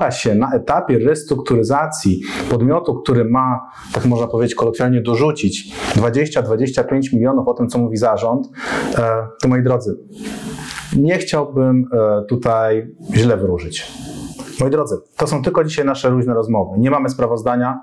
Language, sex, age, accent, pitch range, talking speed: Polish, male, 30-49, native, 110-130 Hz, 130 wpm